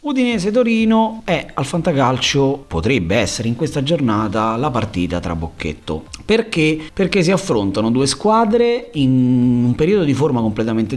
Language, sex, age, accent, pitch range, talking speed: Italian, male, 30-49, native, 95-135 Hz, 140 wpm